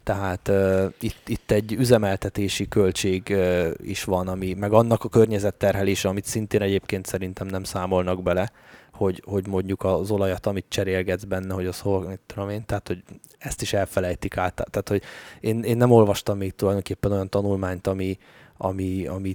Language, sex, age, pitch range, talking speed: Hungarian, male, 20-39, 95-105 Hz, 170 wpm